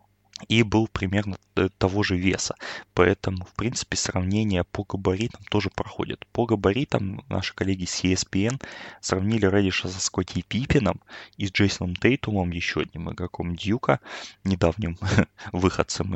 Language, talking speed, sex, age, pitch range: Russian, 130 wpm, male, 20-39, 90-110 Hz